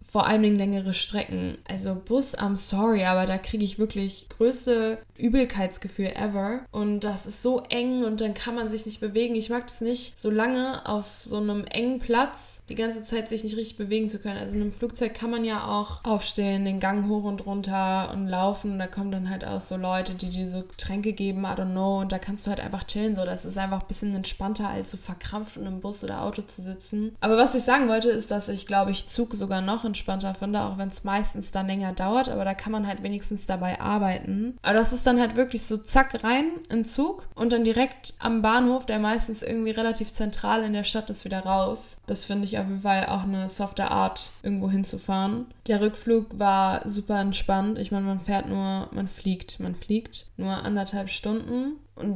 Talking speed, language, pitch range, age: 220 wpm, German, 195-225 Hz, 10-29